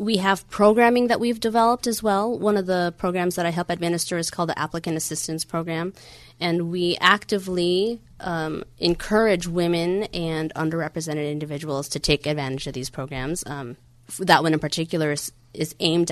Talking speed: 170 wpm